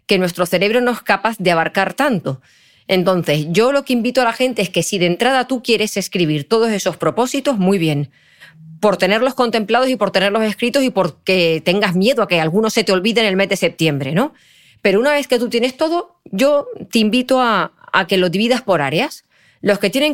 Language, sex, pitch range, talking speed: Spanish, female, 180-245 Hz, 220 wpm